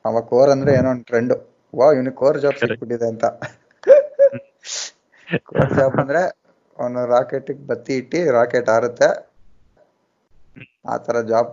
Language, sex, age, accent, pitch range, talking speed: Kannada, male, 20-39, native, 110-120 Hz, 105 wpm